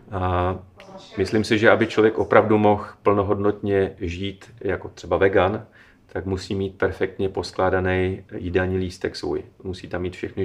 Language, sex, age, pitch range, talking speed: Czech, male, 30-49, 95-105 Hz, 145 wpm